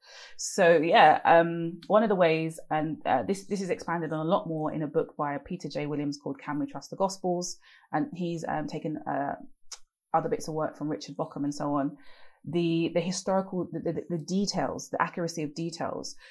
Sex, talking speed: female, 205 wpm